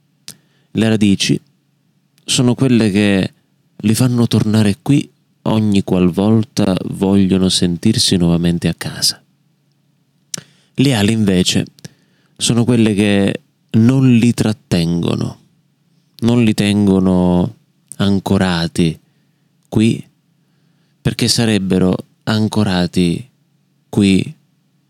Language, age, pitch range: Italian, 30-49, 95-155 Hz